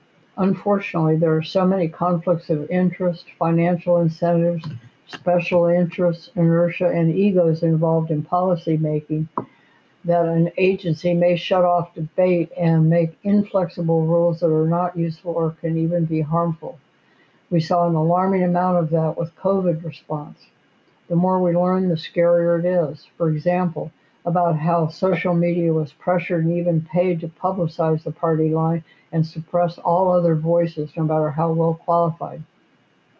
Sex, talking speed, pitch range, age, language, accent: female, 150 wpm, 165-180 Hz, 60-79, English, American